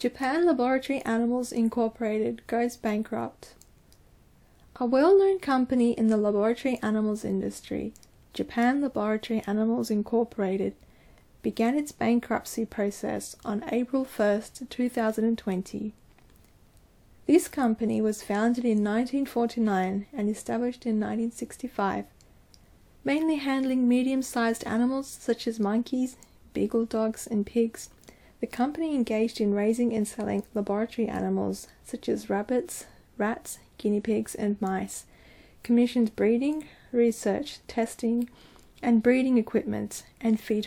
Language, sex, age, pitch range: Japanese, female, 10-29, 210-245 Hz